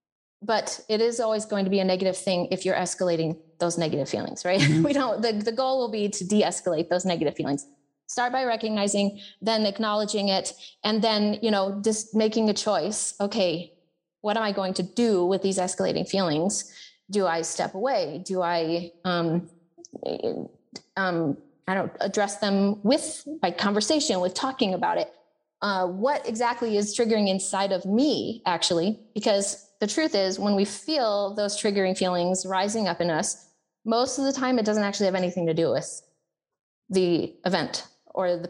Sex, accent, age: female, American, 30-49